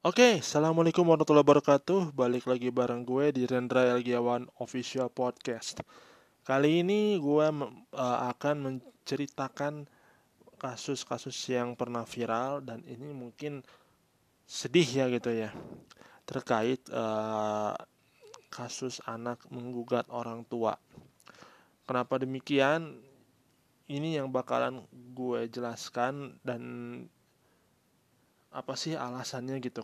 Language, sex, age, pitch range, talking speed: Indonesian, male, 20-39, 125-145 Hz, 100 wpm